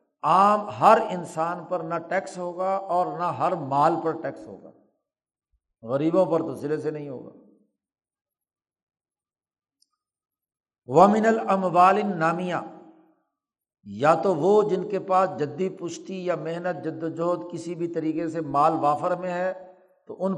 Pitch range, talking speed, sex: 160-195 Hz, 135 wpm, male